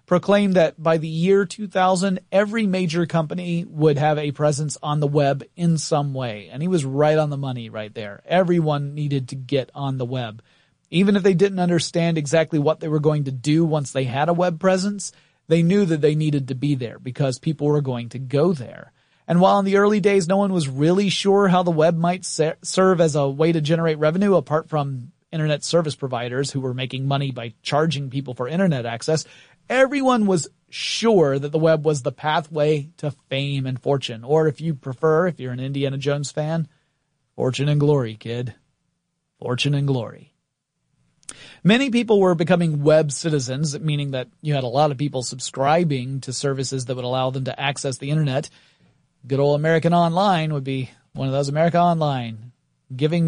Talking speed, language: 195 wpm, English